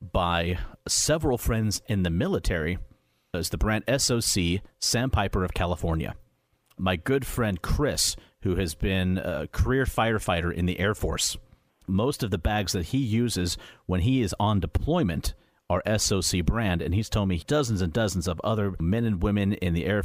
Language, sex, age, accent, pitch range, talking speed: English, male, 40-59, American, 90-115 Hz, 175 wpm